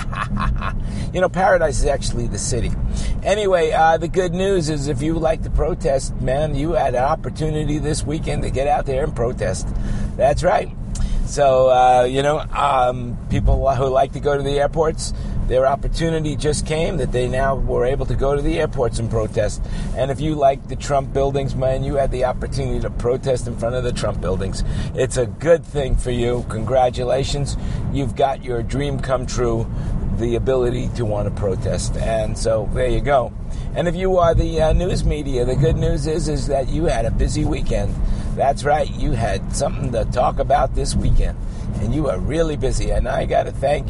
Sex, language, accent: male, English, American